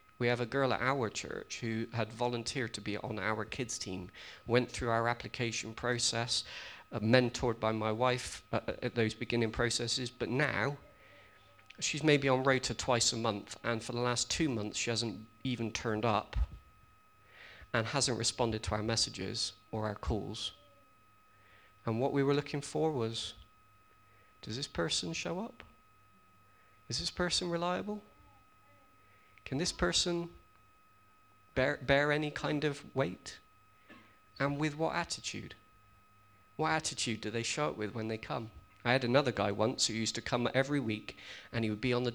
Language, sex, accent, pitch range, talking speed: English, male, British, 105-125 Hz, 165 wpm